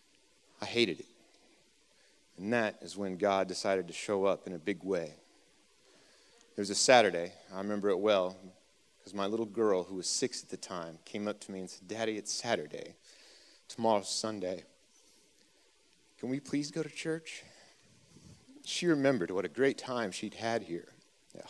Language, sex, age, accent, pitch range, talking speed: English, male, 30-49, American, 95-115 Hz, 165 wpm